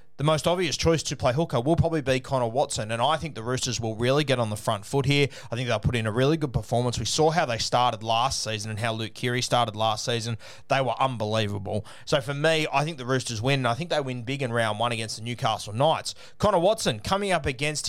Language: English